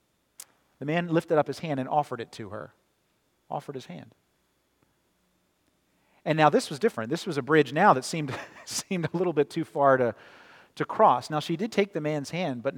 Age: 40-59